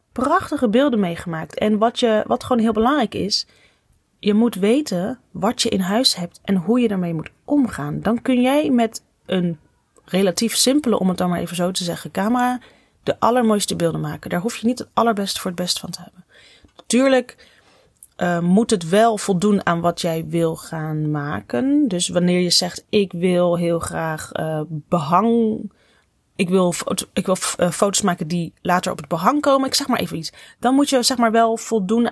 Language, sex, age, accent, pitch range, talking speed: Dutch, female, 30-49, Dutch, 175-235 Hz, 190 wpm